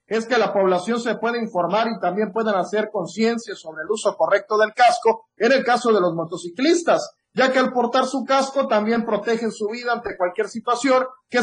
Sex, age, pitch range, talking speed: male, 40-59, 205-255 Hz, 200 wpm